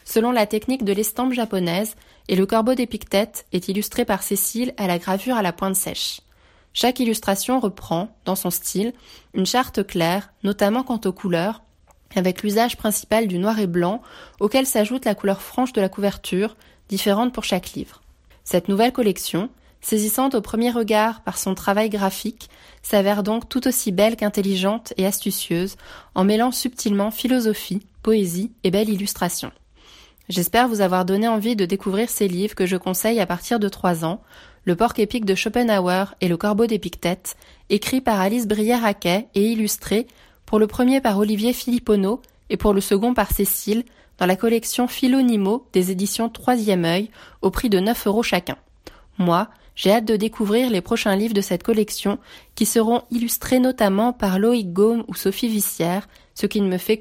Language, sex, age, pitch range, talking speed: French, female, 20-39, 195-230 Hz, 175 wpm